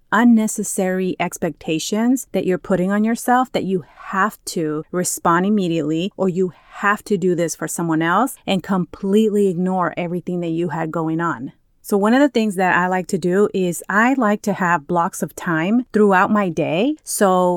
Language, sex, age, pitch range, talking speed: English, female, 30-49, 175-220 Hz, 180 wpm